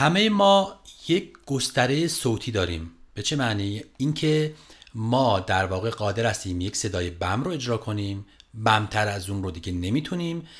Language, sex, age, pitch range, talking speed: Persian, male, 40-59, 95-130 Hz, 160 wpm